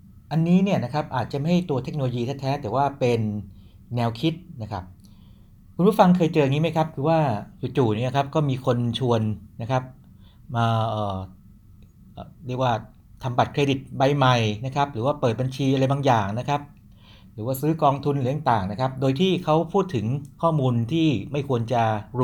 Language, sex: Thai, male